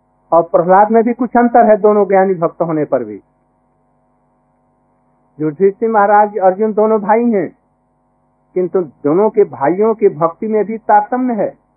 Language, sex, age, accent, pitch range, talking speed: Hindi, male, 50-69, native, 145-210 Hz, 145 wpm